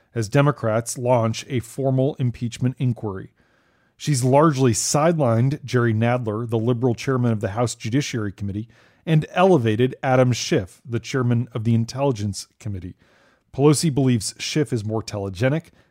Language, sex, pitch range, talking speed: English, male, 120-150 Hz, 135 wpm